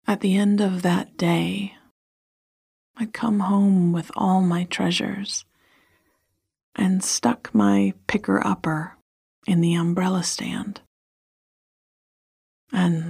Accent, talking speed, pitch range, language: American, 100 wpm, 145-195 Hz, English